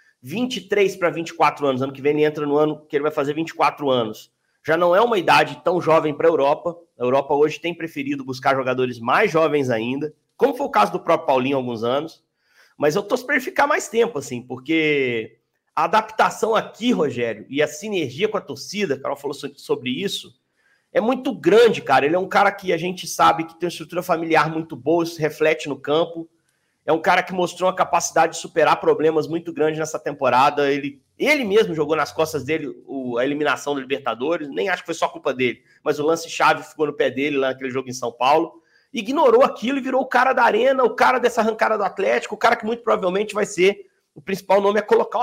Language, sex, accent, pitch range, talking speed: Portuguese, male, Brazilian, 145-200 Hz, 220 wpm